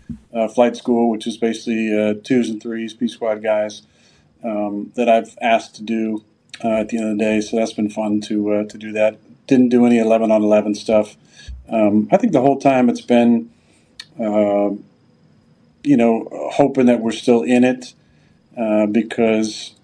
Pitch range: 105-115 Hz